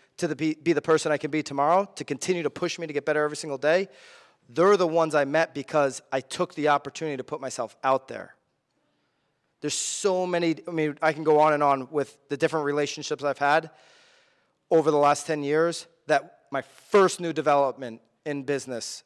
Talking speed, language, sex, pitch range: 200 wpm, English, male, 145-175 Hz